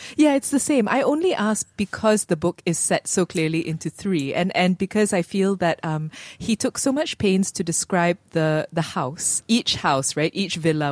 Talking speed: 210 wpm